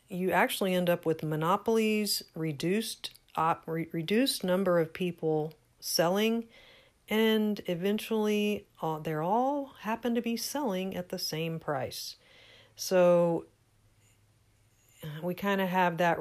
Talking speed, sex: 120 wpm, female